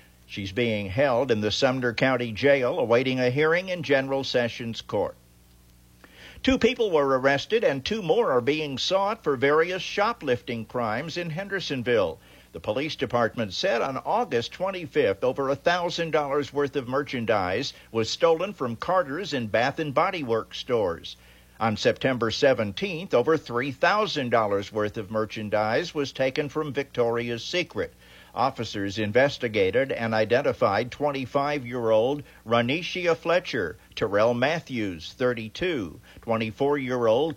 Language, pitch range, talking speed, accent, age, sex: English, 110-145 Hz, 125 wpm, American, 50-69, male